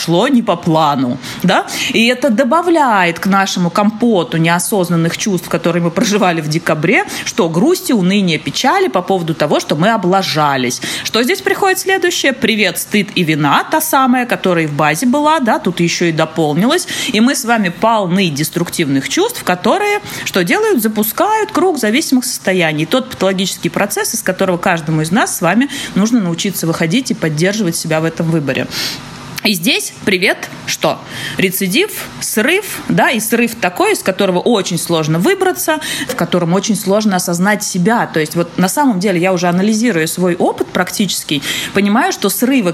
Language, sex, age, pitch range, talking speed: Russian, female, 30-49, 170-235 Hz, 165 wpm